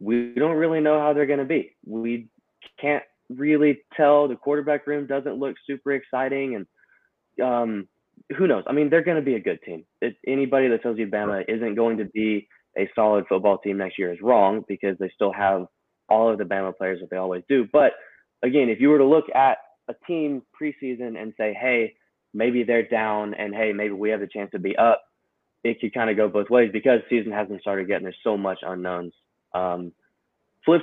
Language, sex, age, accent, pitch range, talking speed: English, male, 20-39, American, 95-125 Hz, 215 wpm